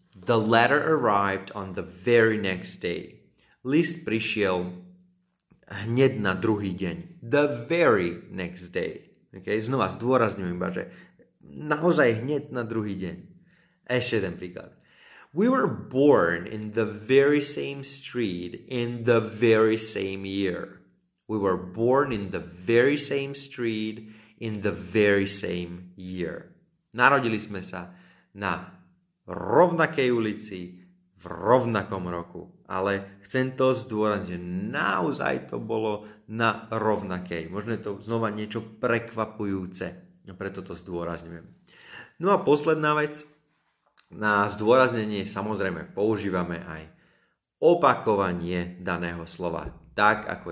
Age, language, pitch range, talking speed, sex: 30-49, Slovak, 95-130 Hz, 120 wpm, male